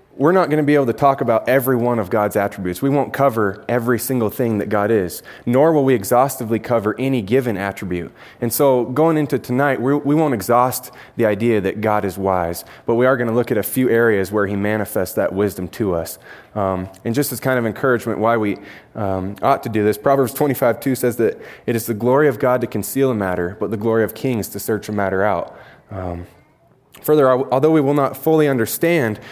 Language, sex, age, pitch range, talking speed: English, male, 20-39, 105-135 Hz, 225 wpm